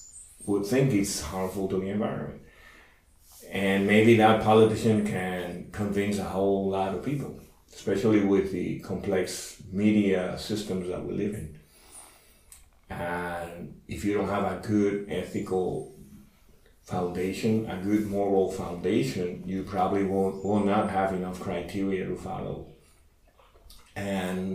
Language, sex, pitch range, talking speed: Czech, male, 85-105 Hz, 125 wpm